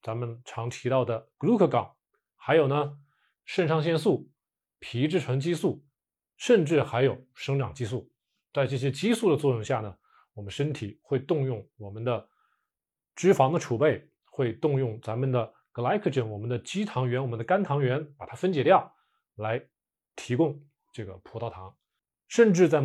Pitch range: 115-155 Hz